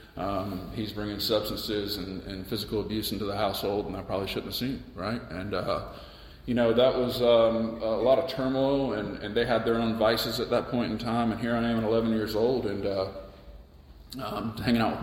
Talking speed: 220 wpm